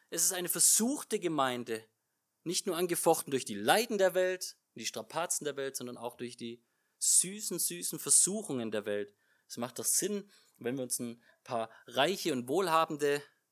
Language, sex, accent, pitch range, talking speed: German, male, German, 150-205 Hz, 170 wpm